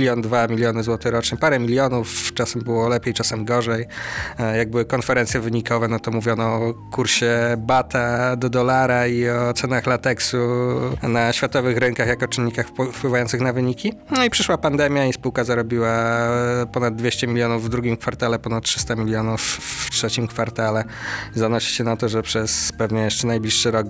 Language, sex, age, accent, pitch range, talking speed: Polish, male, 20-39, native, 110-120 Hz, 160 wpm